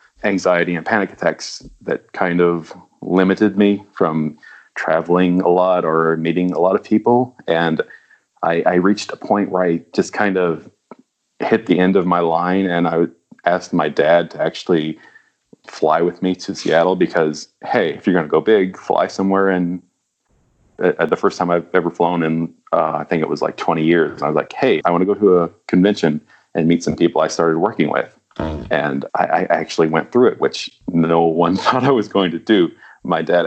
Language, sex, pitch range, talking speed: English, male, 85-105 Hz, 200 wpm